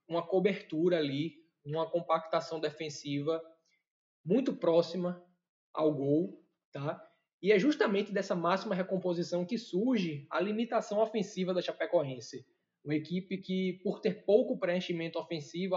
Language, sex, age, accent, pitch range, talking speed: Portuguese, male, 20-39, Brazilian, 155-195 Hz, 120 wpm